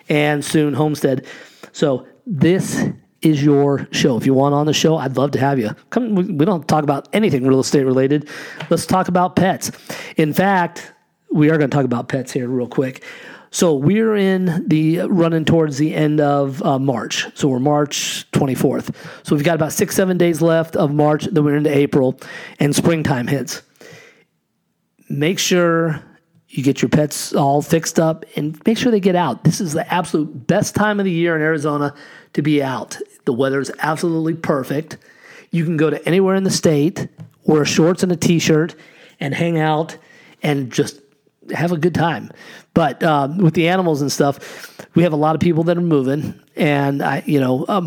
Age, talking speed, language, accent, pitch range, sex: 40-59, 190 wpm, English, American, 145-170 Hz, male